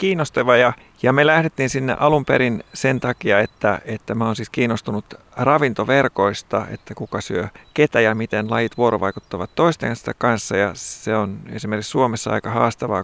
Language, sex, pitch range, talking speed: Finnish, male, 100-130 Hz, 155 wpm